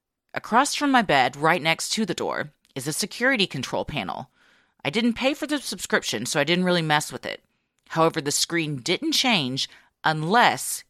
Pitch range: 150-240 Hz